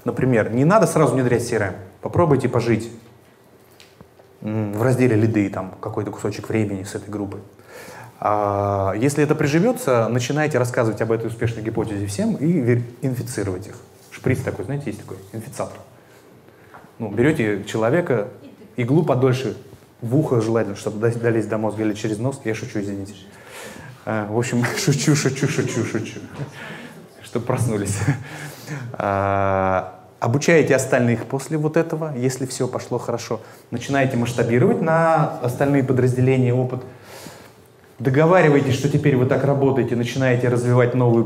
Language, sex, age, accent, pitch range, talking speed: Russian, male, 20-39, native, 110-145 Hz, 125 wpm